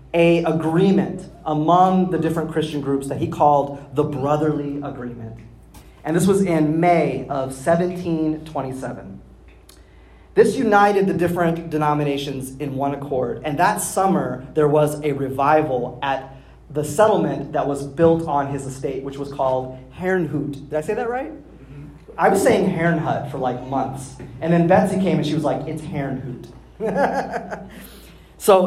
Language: English